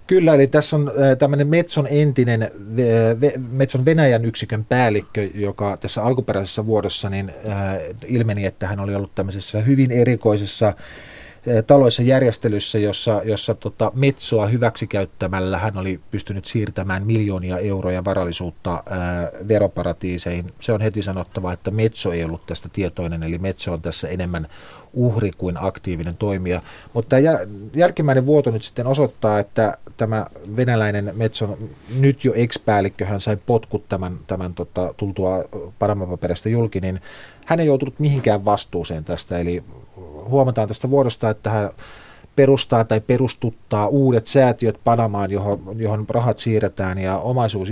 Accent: native